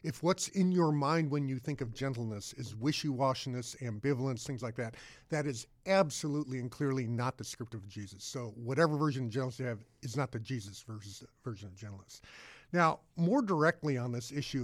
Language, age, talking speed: English, 50-69, 185 wpm